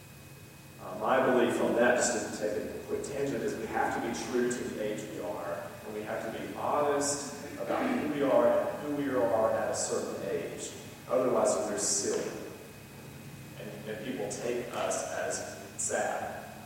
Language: English